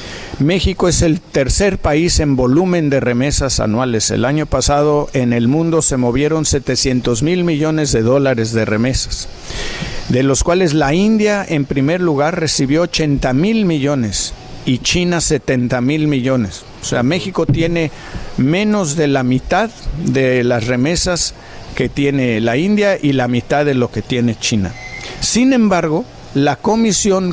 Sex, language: male, Spanish